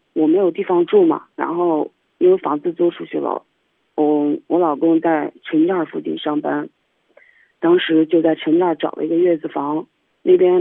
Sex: female